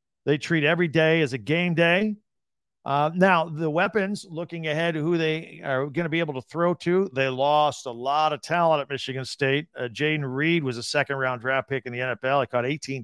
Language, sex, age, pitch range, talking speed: English, male, 50-69, 130-165 Hz, 215 wpm